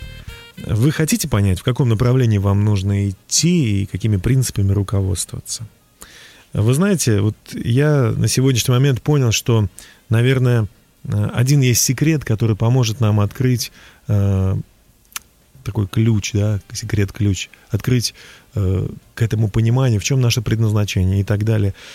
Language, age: Russian, 30-49